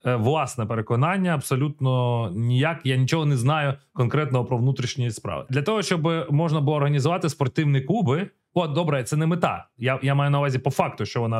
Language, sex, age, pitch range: Ukrainian, male, 30-49, 135-190 Hz